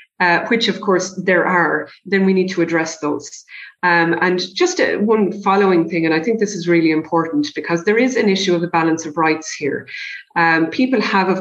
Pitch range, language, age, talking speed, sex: 165-205 Hz, English, 30-49, 215 wpm, female